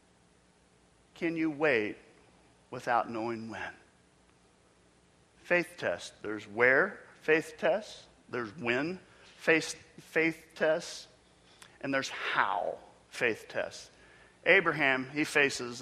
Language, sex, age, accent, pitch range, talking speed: English, male, 50-69, American, 105-155 Hz, 95 wpm